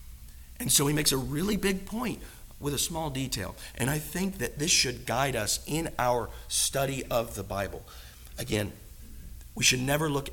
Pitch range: 110-140 Hz